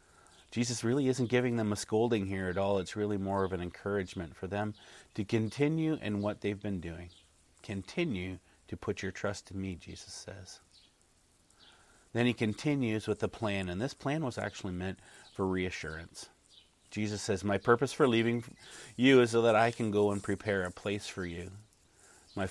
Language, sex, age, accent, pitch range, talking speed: English, male, 30-49, American, 95-110 Hz, 180 wpm